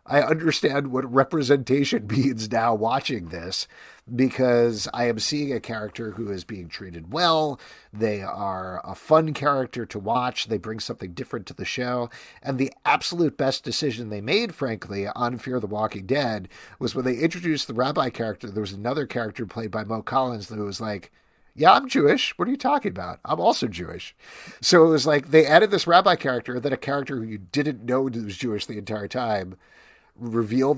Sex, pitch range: male, 105-135 Hz